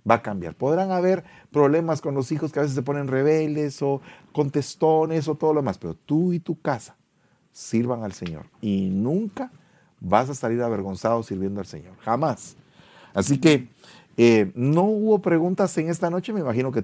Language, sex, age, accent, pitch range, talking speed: English, male, 40-59, Venezuelan, 100-150 Hz, 180 wpm